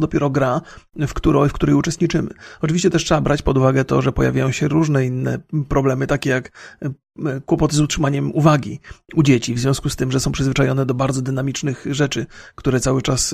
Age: 40-59